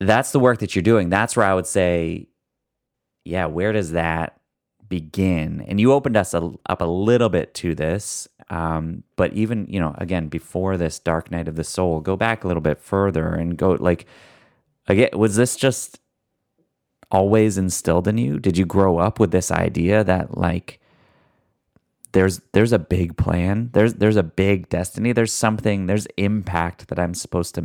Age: 30-49